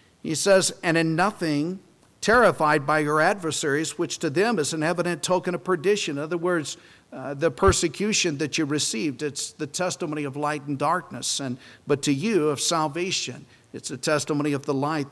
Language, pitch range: English, 135-175 Hz